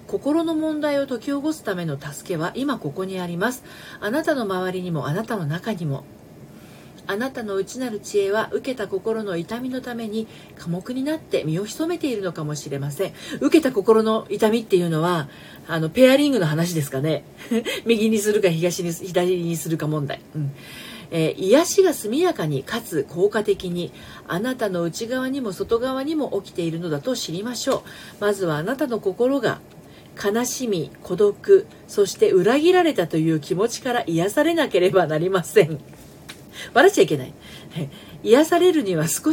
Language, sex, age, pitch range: Japanese, female, 40-59, 175-275 Hz